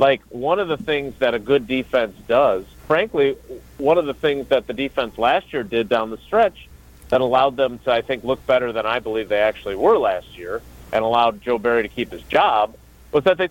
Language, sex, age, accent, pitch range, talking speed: English, male, 50-69, American, 115-150 Hz, 225 wpm